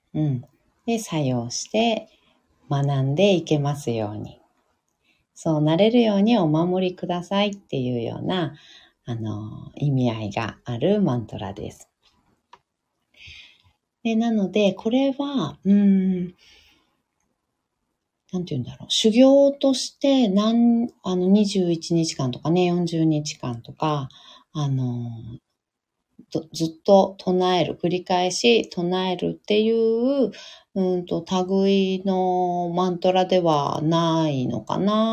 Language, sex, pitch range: Japanese, female, 145-210 Hz